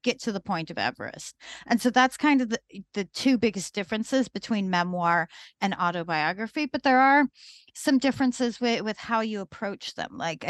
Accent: American